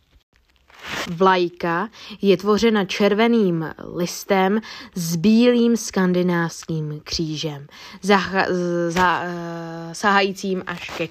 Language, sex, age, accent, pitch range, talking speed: Czech, female, 20-39, native, 175-210 Hz, 80 wpm